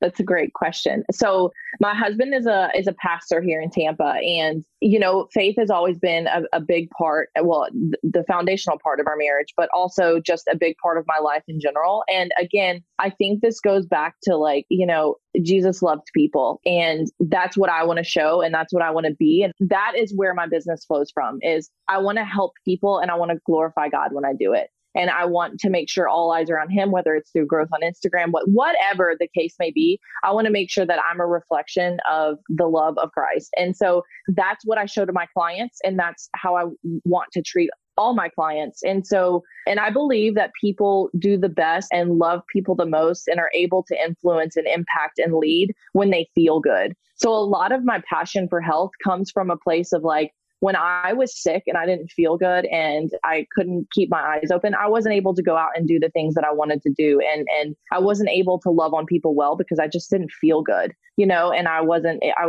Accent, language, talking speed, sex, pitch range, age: American, English, 235 wpm, female, 160-195 Hz, 20-39